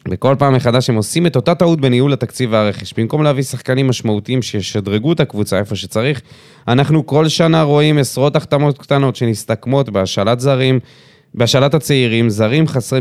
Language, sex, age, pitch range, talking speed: Hebrew, male, 20-39, 110-145 Hz, 155 wpm